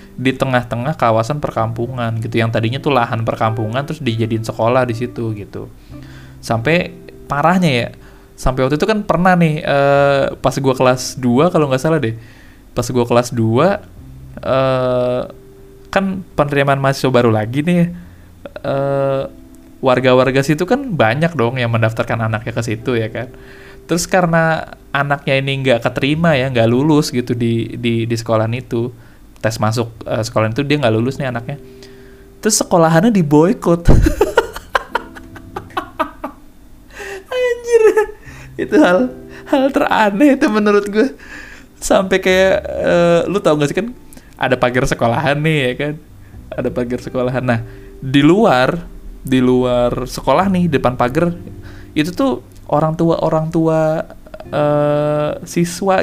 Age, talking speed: 20-39, 140 wpm